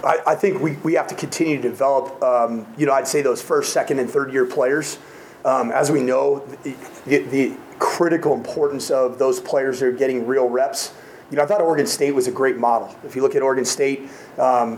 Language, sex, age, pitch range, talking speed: English, male, 30-49, 125-150 Hz, 220 wpm